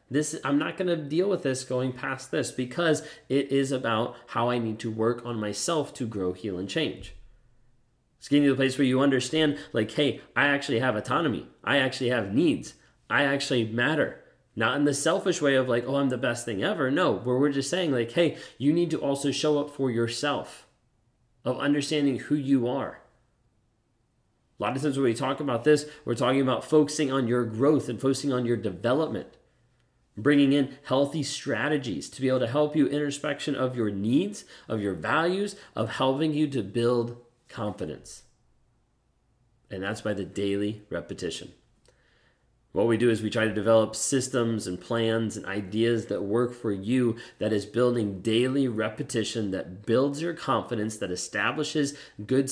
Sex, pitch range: male, 115-140 Hz